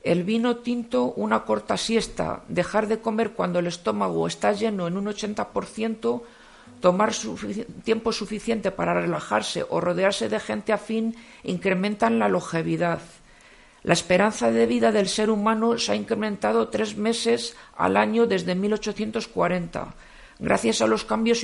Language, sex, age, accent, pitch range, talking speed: Spanish, female, 50-69, Spanish, 175-225 Hz, 150 wpm